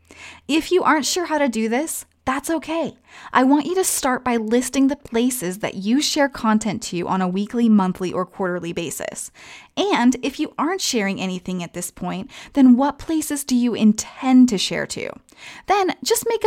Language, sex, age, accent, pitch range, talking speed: English, female, 20-39, American, 205-300 Hz, 190 wpm